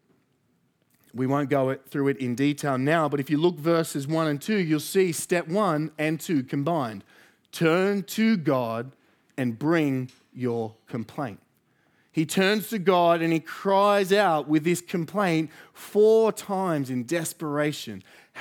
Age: 40-59